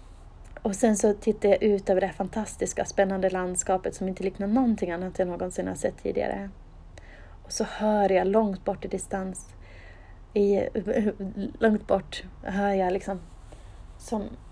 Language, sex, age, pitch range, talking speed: Swedish, female, 30-49, 150-210 Hz, 150 wpm